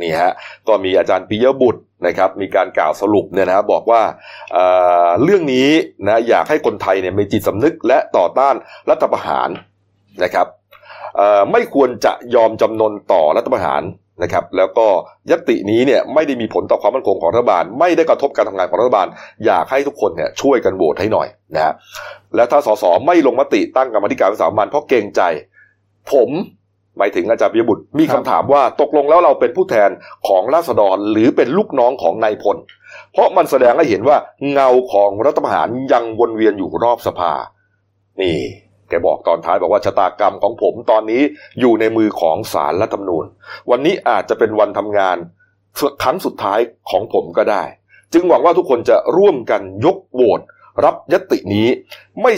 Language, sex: Thai, male